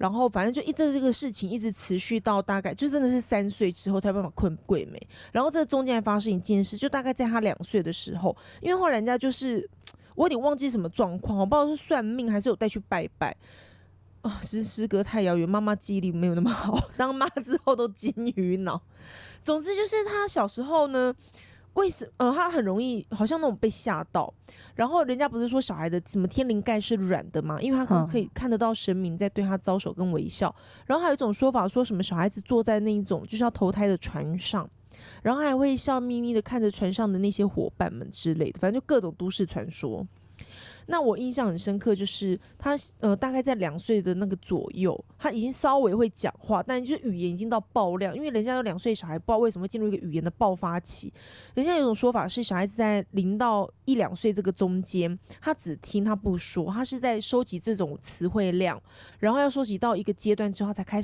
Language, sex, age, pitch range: Chinese, female, 20-39, 185-250 Hz